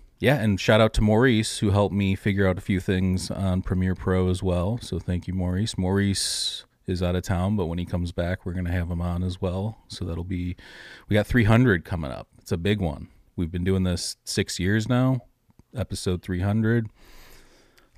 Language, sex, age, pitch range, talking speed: English, male, 30-49, 90-105 Hz, 205 wpm